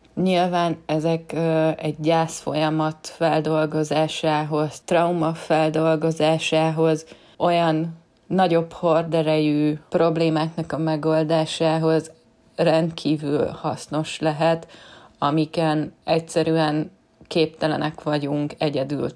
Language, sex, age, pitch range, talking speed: Hungarian, female, 20-39, 155-165 Hz, 70 wpm